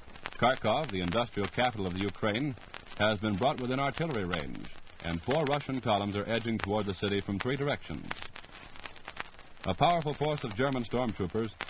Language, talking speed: English, 160 wpm